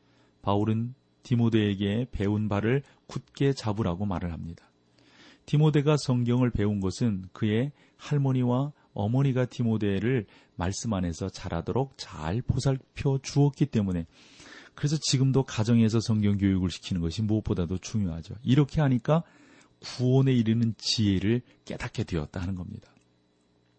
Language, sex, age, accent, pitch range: Korean, male, 40-59, native, 95-135 Hz